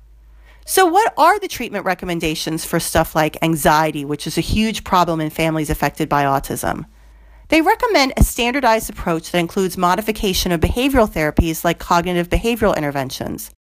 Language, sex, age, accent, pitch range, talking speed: English, female, 40-59, American, 165-255 Hz, 155 wpm